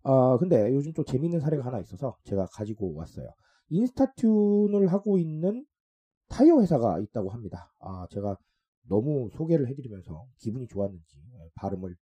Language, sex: Korean, male